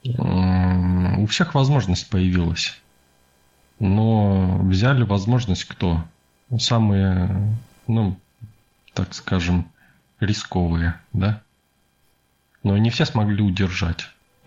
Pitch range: 85-105 Hz